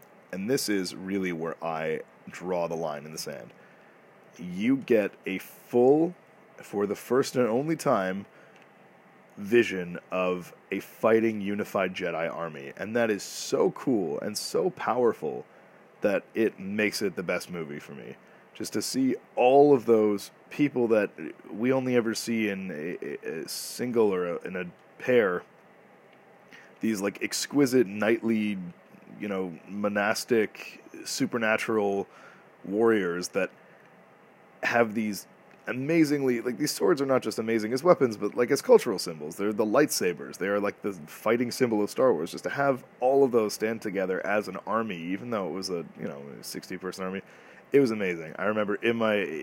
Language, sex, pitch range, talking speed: English, male, 95-120 Hz, 160 wpm